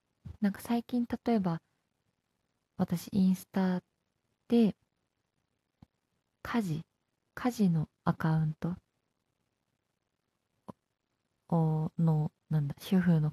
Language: Japanese